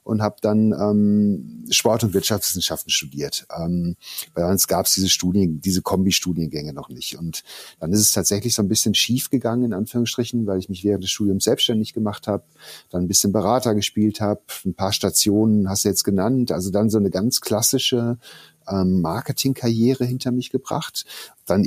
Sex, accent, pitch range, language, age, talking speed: male, German, 100-120 Hz, German, 50-69, 175 wpm